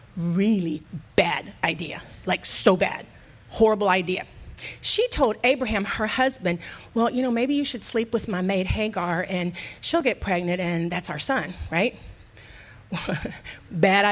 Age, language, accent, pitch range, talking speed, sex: 40-59, English, American, 190-280 Hz, 145 wpm, female